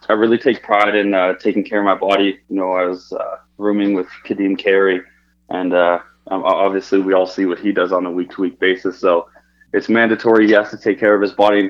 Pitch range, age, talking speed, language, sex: 90-105 Hz, 20-39, 230 wpm, English, male